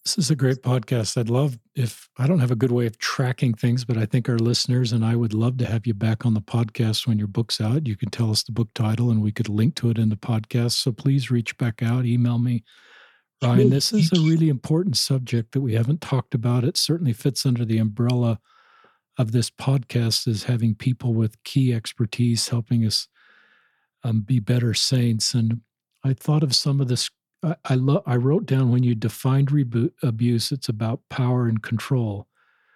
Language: English